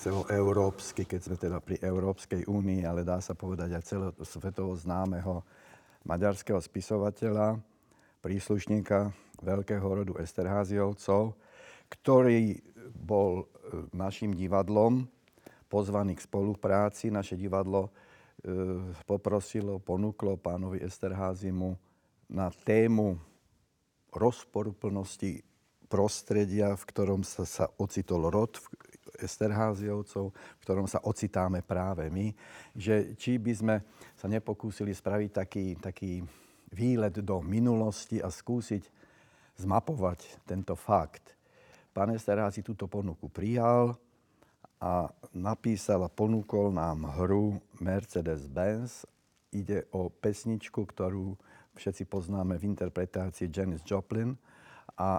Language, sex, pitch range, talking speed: Slovak, male, 95-105 Hz, 100 wpm